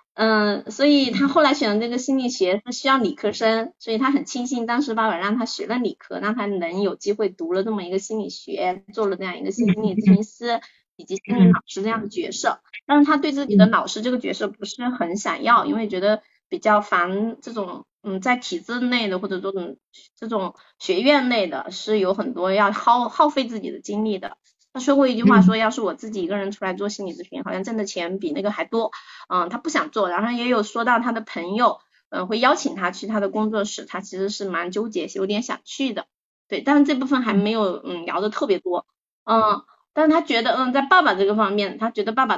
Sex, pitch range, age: female, 200-265 Hz, 20-39